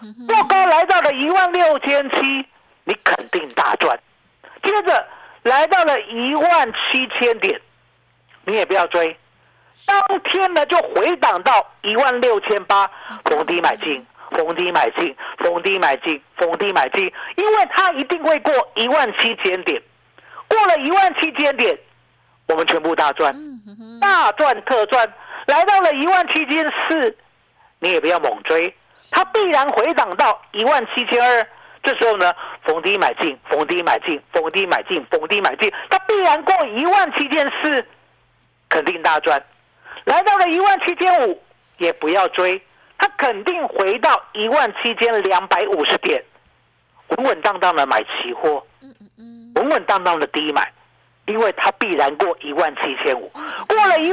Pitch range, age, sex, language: 240-390 Hz, 50-69, male, Chinese